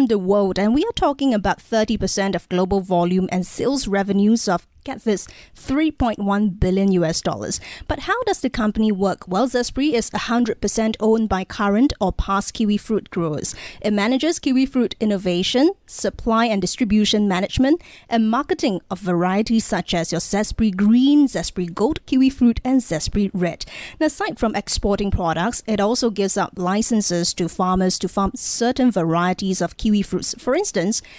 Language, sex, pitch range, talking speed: English, female, 195-240 Hz, 165 wpm